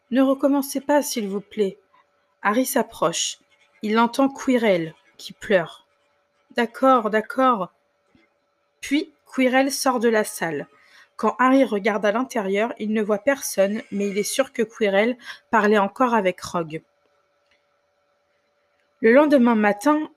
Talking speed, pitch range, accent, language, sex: 140 wpm, 205-260 Hz, French, French, female